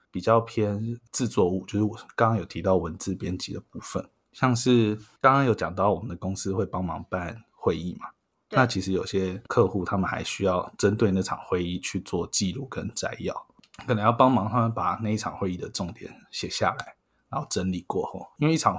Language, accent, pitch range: Chinese, native, 95-115 Hz